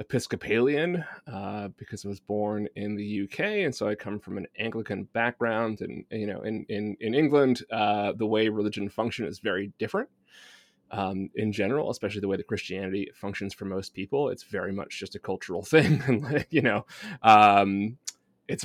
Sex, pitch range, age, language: male, 105-145 Hz, 20-39, English